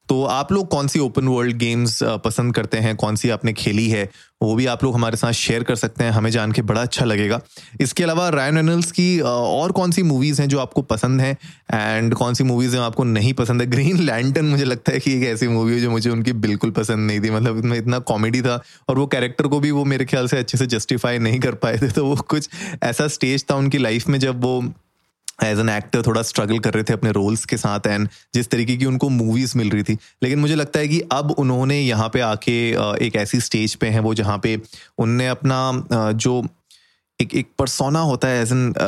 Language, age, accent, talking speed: Hindi, 20-39, native, 235 wpm